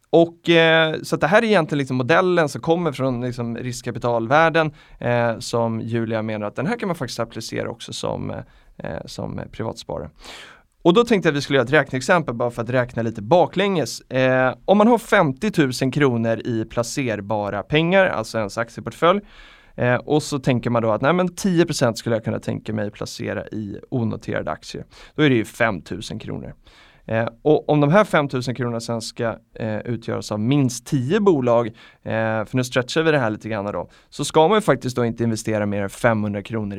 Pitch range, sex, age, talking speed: 115-155 Hz, male, 30-49, 200 wpm